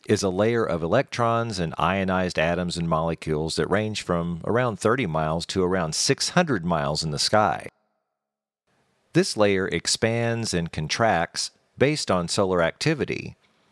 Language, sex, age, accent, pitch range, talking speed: English, male, 50-69, American, 80-105 Hz, 140 wpm